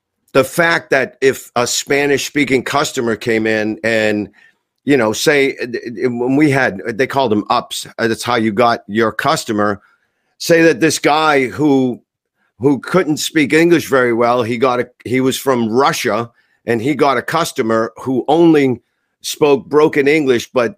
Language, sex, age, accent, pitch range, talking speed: English, male, 50-69, American, 110-145 Hz, 160 wpm